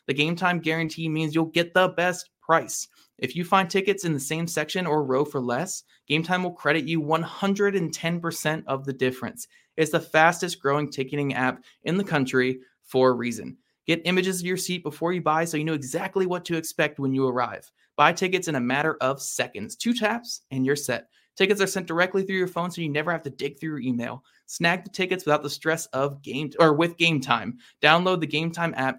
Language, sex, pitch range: English, male, 145-180 Hz